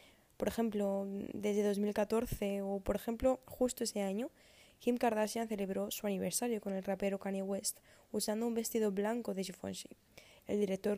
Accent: Spanish